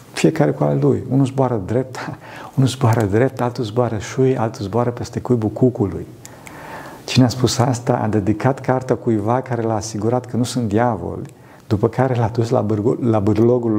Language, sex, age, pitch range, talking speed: Romanian, male, 50-69, 105-130 Hz, 170 wpm